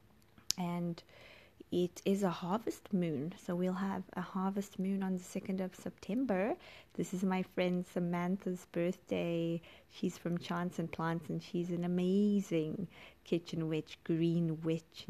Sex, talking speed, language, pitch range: female, 145 wpm, English, 170-190 Hz